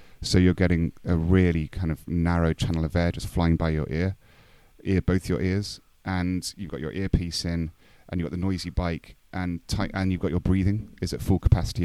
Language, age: English, 30-49